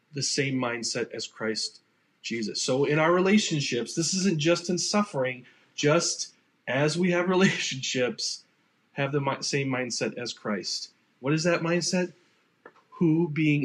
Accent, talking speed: American, 140 wpm